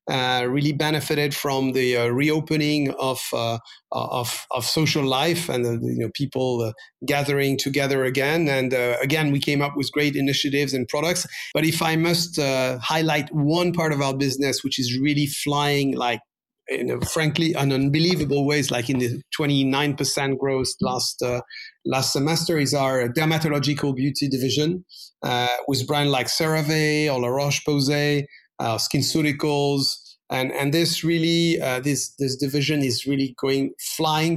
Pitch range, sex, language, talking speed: 130-155 Hz, male, English, 165 wpm